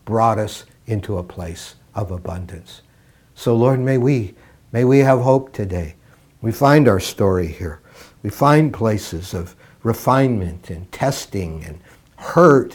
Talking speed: 140 wpm